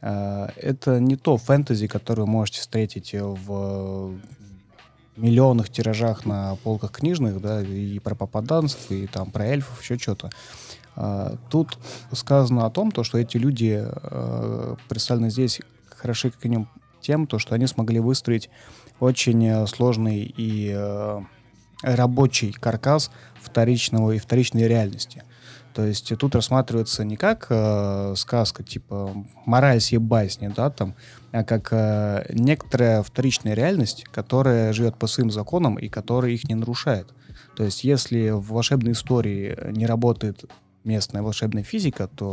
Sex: male